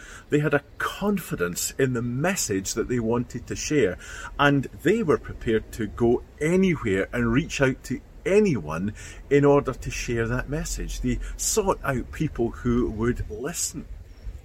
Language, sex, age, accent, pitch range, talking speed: English, male, 40-59, British, 90-130 Hz, 155 wpm